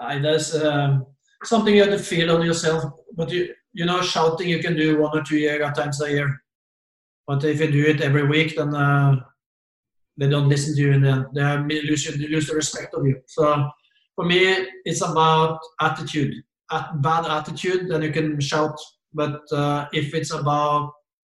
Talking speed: 180 wpm